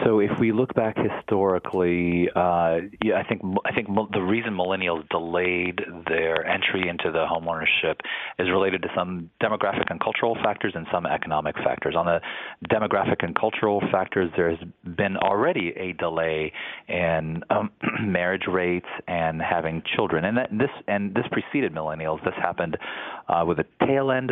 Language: English